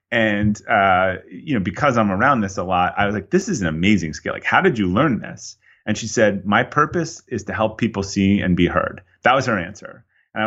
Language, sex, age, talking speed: English, male, 30-49, 245 wpm